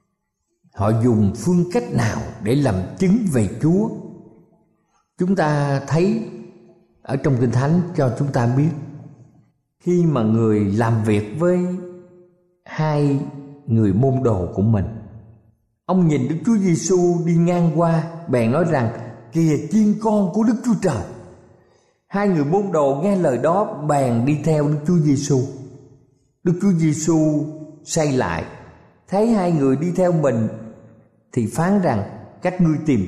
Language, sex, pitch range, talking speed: Vietnamese, male, 120-170 Hz, 145 wpm